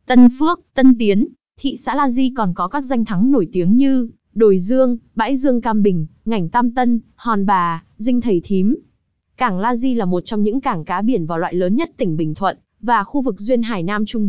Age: 20-39